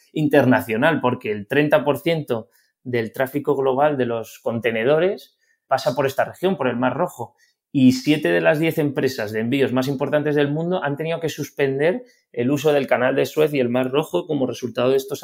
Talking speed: 190 wpm